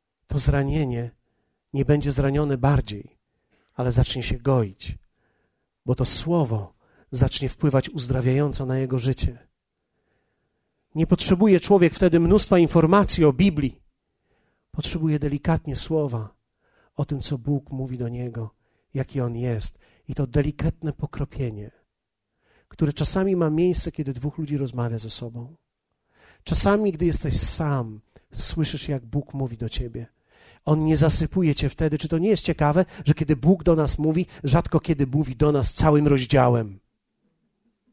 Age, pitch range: 40-59, 125-165 Hz